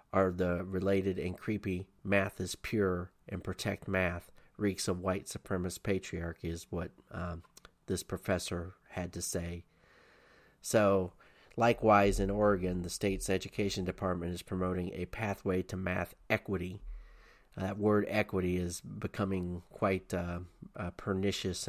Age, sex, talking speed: 40-59, male, 135 wpm